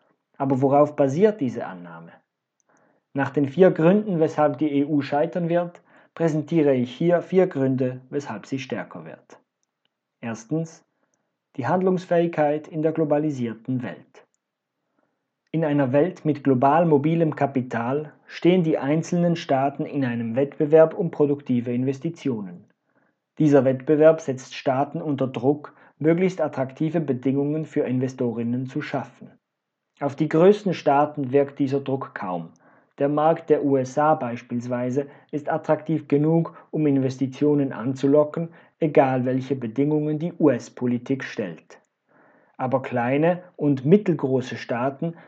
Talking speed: 120 wpm